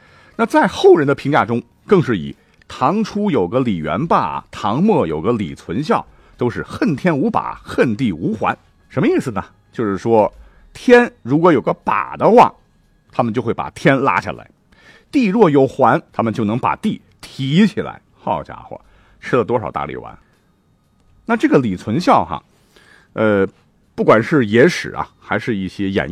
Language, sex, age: Chinese, male, 50-69